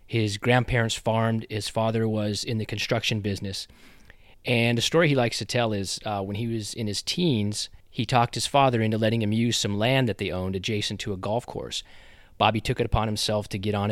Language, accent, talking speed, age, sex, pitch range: English, American, 220 wpm, 30-49, male, 100-115 Hz